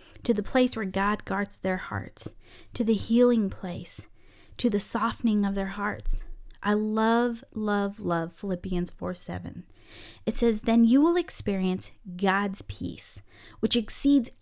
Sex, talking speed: female, 145 wpm